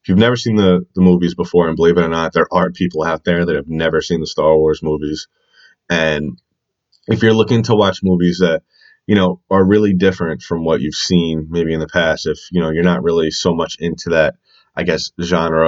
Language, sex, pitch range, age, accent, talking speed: English, male, 80-95 Hz, 20-39, American, 225 wpm